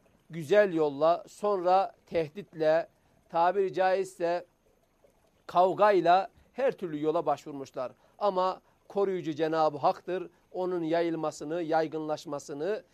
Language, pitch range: Turkish, 160-195 Hz